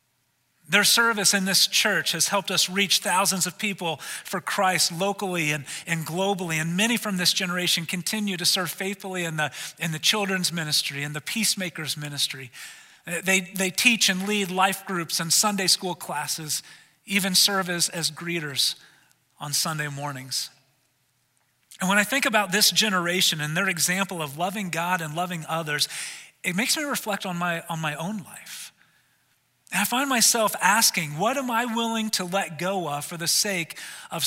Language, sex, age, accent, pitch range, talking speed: English, male, 40-59, American, 150-200 Hz, 175 wpm